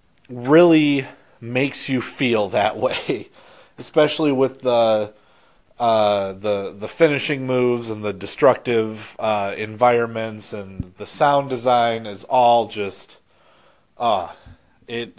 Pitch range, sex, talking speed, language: 115-145 Hz, male, 115 wpm, English